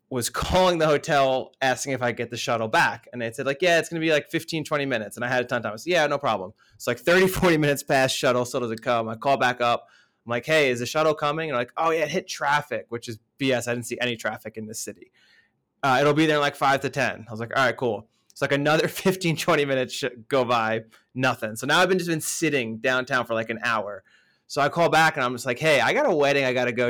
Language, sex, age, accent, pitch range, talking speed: English, male, 20-39, American, 120-150 Hz, 290 wpm